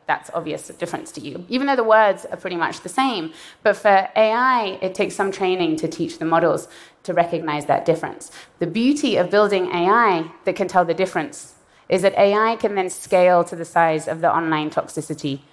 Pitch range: 165-220 Hz